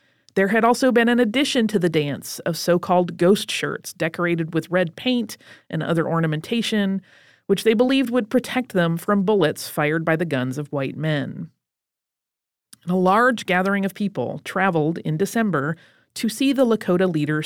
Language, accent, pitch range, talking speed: English, American, 160-215 Hz, 165 wpm